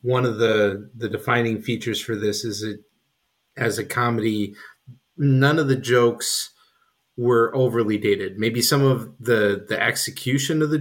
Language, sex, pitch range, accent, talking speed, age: English, male, 105-120 Hz, American, 155 wpm, 30-49